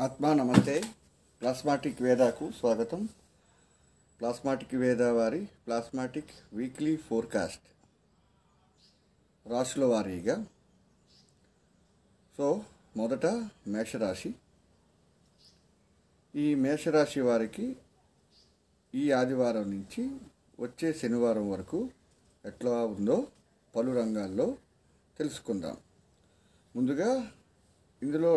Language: Telugu